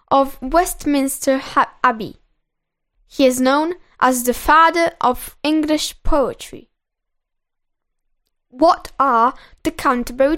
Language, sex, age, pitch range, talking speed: Italian, female, 10-29, 255-340 Hz, 95 wpm